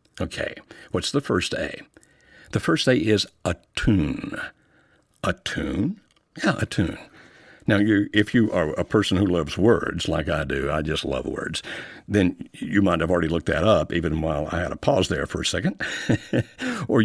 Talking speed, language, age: 175 wpm, English, 60-79